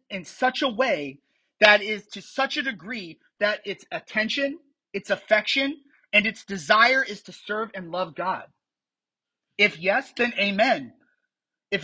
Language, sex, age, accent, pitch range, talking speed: English, male, 30-49, American, 170-255 Hz, 145 wpm